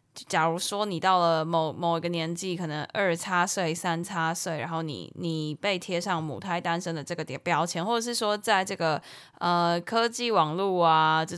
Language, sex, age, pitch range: Chinese, female, 10-29, 165-210 Hz